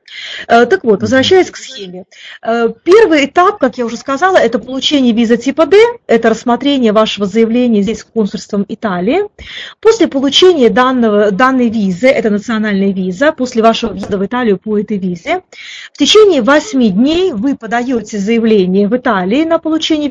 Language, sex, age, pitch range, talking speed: Russian, female, 30-49, 215-285 Hz, 150 wpm